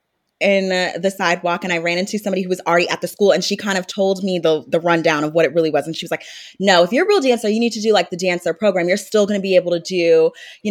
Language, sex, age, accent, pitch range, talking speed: English, female, 20-39, American, 170-200 Hz, 305 wpm